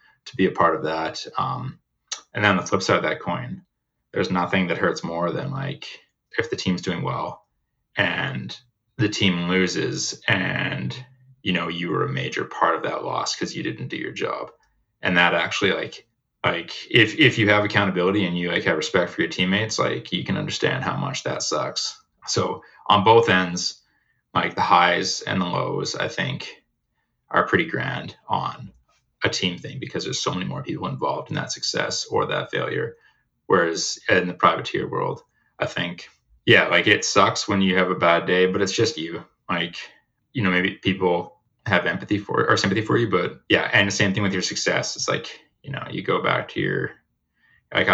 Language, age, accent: English, 20-39, American